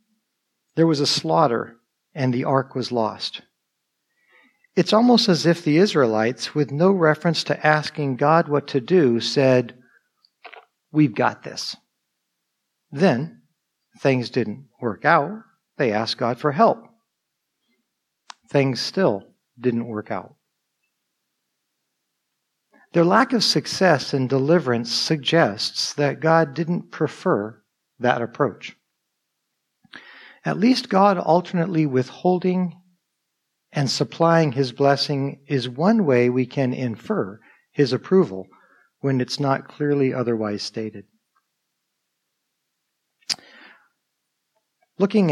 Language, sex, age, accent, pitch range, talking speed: English, male, 50-69, American, 125-170 Hz, 105 wpm